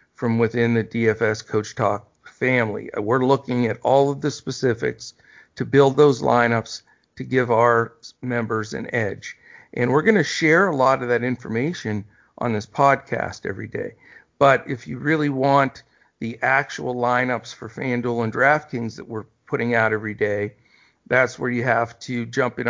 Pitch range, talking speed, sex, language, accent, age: 115-140 Hz, 170 wpm, male, English, American, 50-69